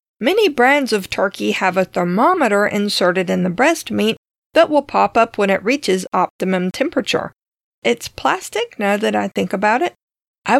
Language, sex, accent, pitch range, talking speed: English, female, American, 190-275 Hz, 170 wpm